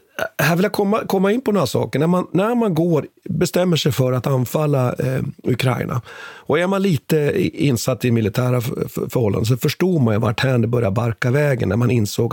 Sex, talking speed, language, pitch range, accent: male, 195 wpm, Swedish, 120-175 Hz, native